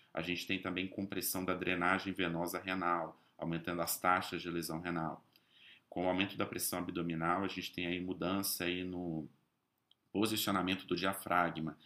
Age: 30-49